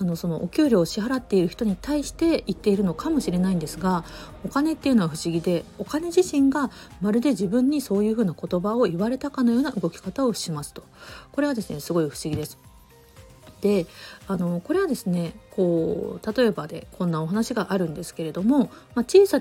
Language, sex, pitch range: Japanese, female, 170-245 Hz